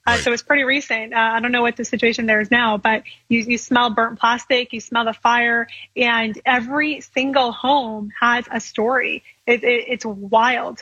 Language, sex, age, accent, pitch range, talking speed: English, female, 20-39, American, 220-245 Hz, 200 wpm